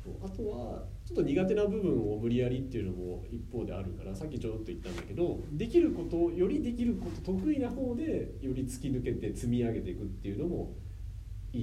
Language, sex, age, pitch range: Japanese, male, 40-59, 95-120 Hz